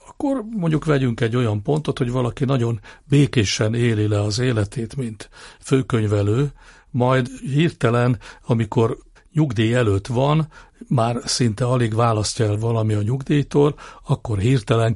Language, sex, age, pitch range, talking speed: Hungarian, male, 60-79, 110-140 Hz, 130 wpm